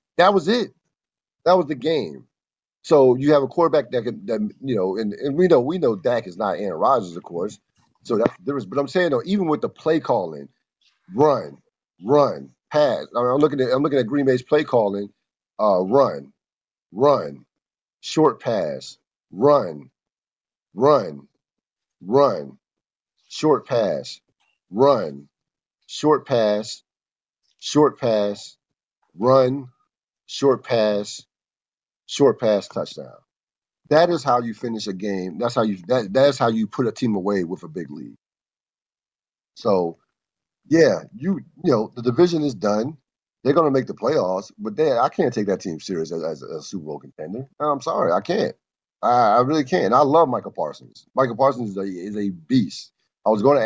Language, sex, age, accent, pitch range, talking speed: English, male, 50-69, American, 105-145 Hz, 165 wpm